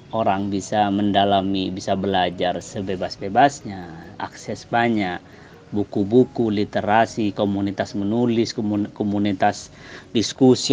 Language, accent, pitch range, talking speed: Indonesian, native, 100-130 Hz, 80 wpm